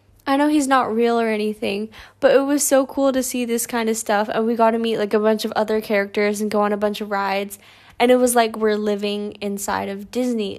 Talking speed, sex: 255 wpm, female